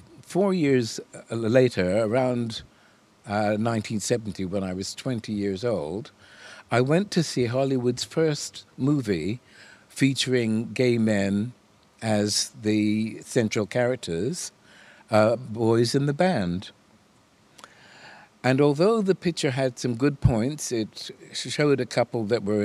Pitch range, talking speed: 105-135 Hz, 120 wpm